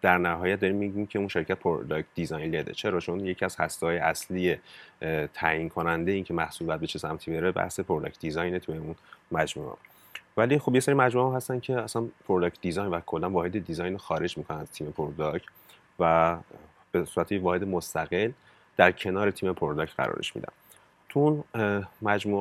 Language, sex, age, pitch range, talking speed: Persian, male, 30-49, 85-110 Hz, 175 wpm